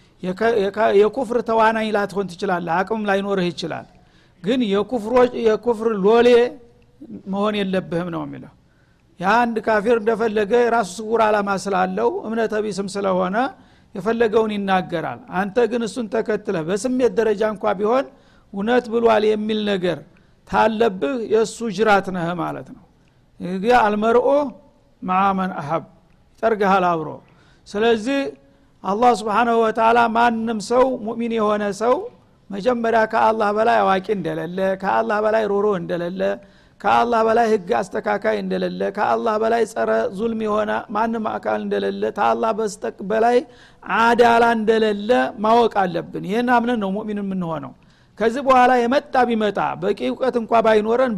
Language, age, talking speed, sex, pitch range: Amharic, 60-79, 120 wpm, male, 195-235 Hz